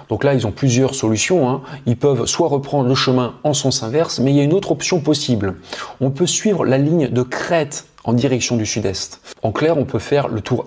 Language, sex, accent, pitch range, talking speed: French, male, French, 110-145 Hz, 235 wpm